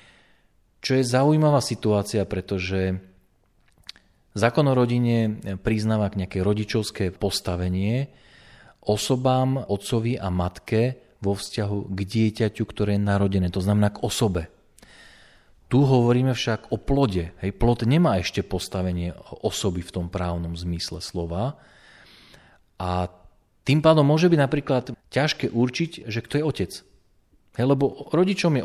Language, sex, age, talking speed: Slovak, male, 40-59, 125 wpm